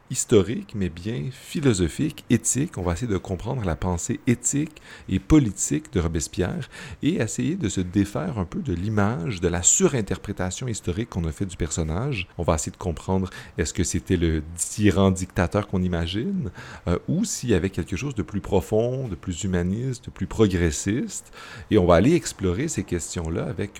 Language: French